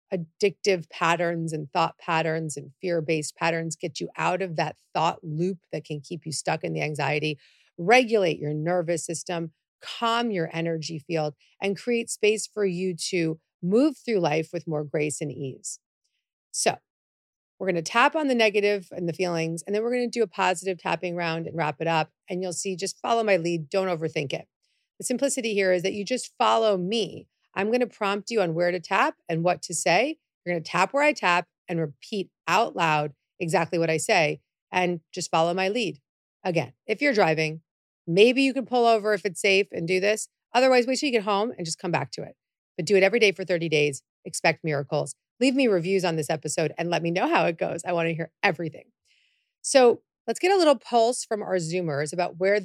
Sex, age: female, 40-59